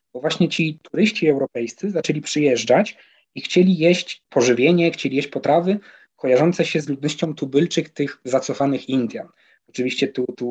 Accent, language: native, Polish